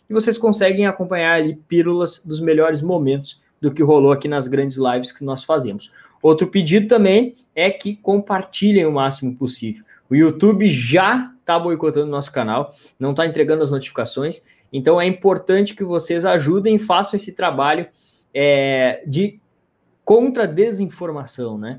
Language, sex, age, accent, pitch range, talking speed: Portuguese, male, 20-39, Brazilian, 145-200 Hz, 145 wpm